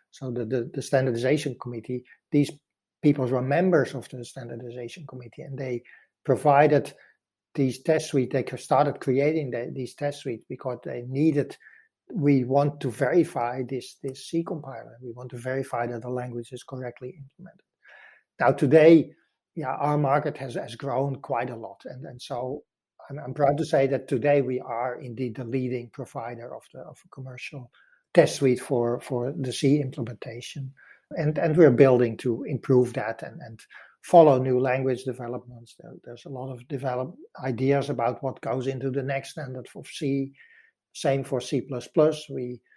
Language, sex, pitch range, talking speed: English, male, 125-145 Hz, 165 wpm